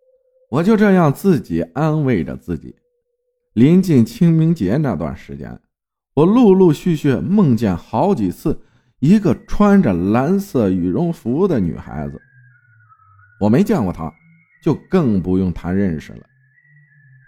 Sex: male